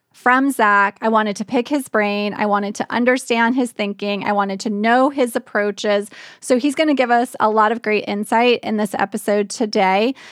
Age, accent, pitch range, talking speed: 20-39, American, 205-255 Hz, 205 wpm